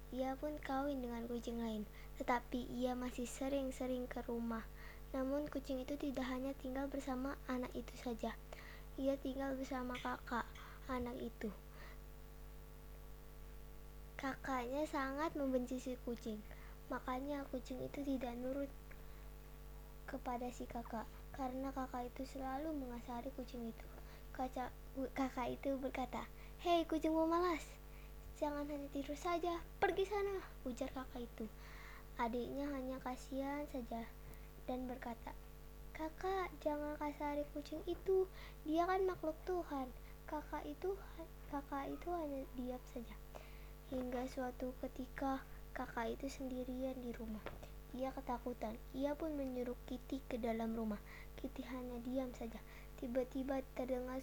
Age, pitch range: 20-39, 250-285 Hz